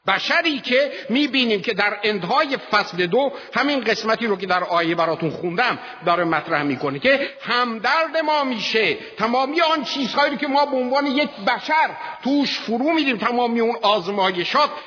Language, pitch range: Persian, 195-270 Hz